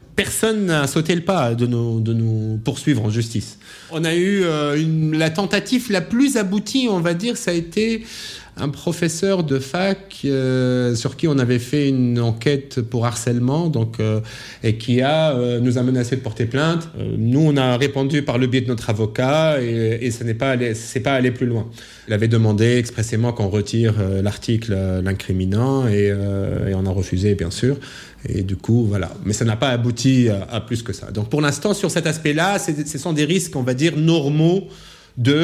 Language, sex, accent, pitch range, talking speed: French, male, French, 115-155 Hz, 205 wpm